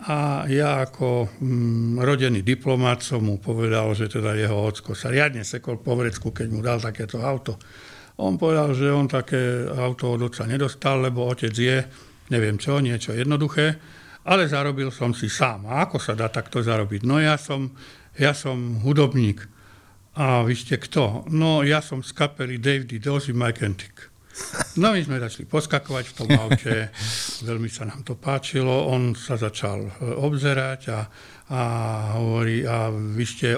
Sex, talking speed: male, 160 wpm